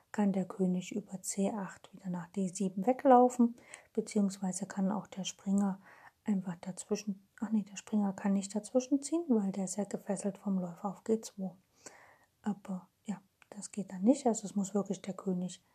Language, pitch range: German, 195-230 Hz